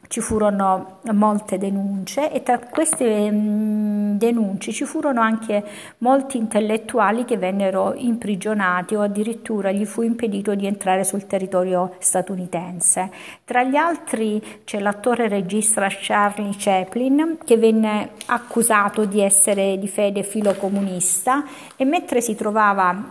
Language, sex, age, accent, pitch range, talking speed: Italian, female, 50-69, native, 190-230 Hz, 120 wpm